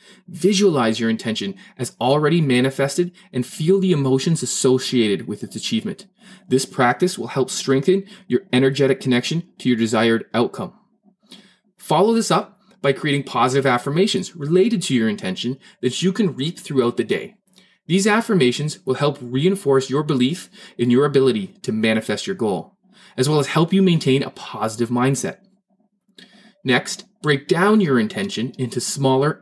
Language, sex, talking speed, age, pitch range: English, male, 150 wpm, 20-39, 130-195 Hz